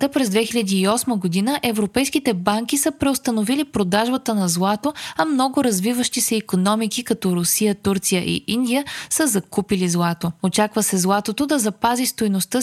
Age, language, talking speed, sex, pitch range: 20-39, Bulgarian, 145 wpm, female, 190-260 Hz